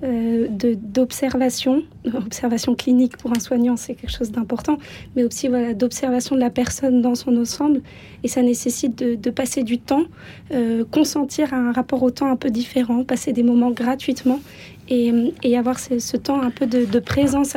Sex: female